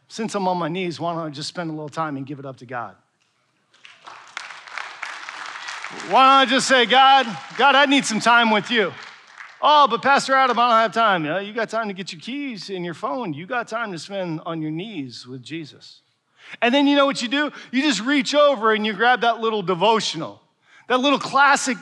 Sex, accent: male, American